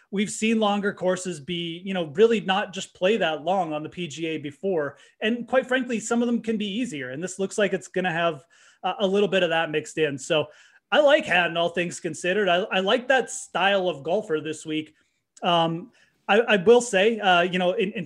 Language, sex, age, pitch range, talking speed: English, male, 30-49, 155-200 Hz, 225 wpm